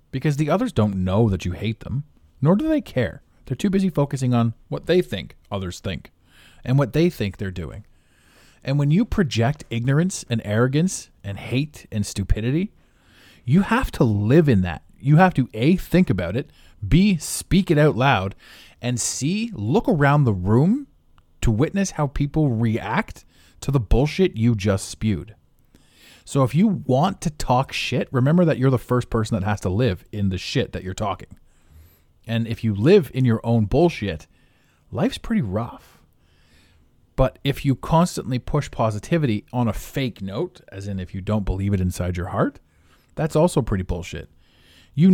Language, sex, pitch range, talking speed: English, male, 95-155 Hz, 180 wpm